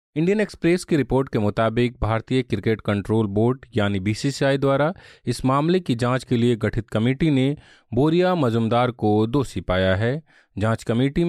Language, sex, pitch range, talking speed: Hindi, male, 110-140 Hz, 160 wpm